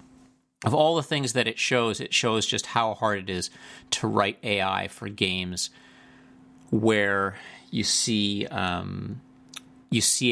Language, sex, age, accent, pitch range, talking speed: English, male, 40-59, American, 105-125 Hz, 145 wpm